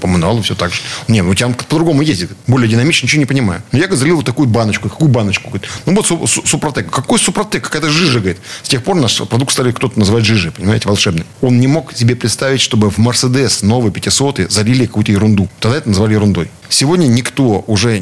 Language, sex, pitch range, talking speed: Russian, male, 105-130 Hz, 215 wpm